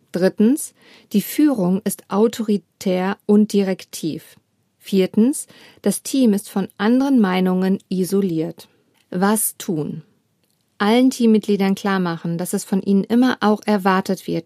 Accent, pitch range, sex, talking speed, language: German, 185-225 Hz, female, 120 wpm, German